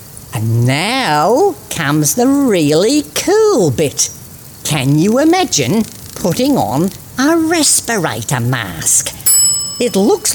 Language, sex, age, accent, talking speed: English, female, 50-69, British, 100 wpm